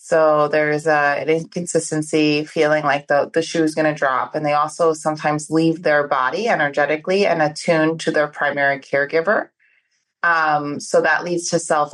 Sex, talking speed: female, 170 wpm